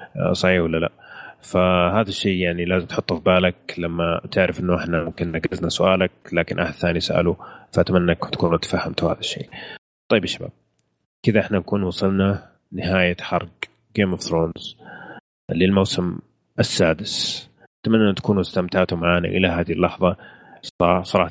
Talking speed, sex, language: 140 wpm, male, Arabic